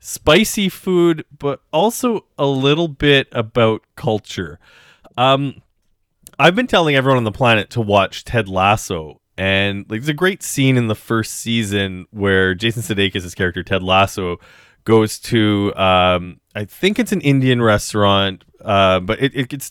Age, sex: 30-49, male